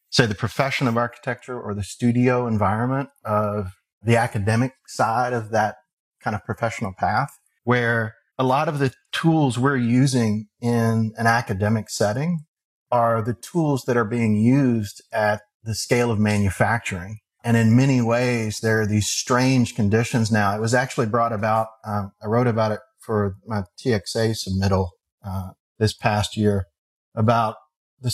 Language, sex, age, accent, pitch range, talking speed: English, male, 30-49, American, 105-125 Hz, 155 wpm